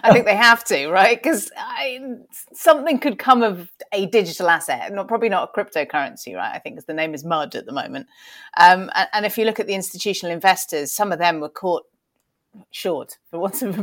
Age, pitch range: 30-49, 155-195 Hz